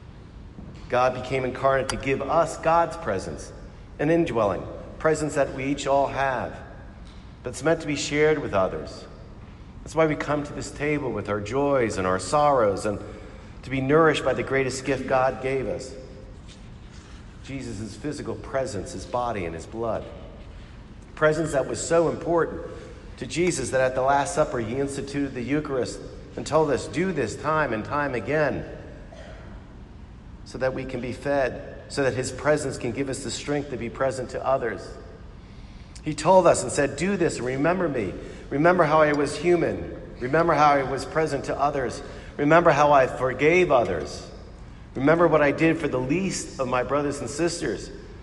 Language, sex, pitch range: English, male, 110-150 Hz